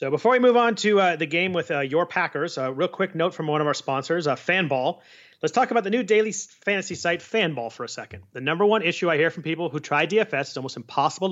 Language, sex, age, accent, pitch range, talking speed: English, male, 30-49, American, 135-175 Hz, 265 wpm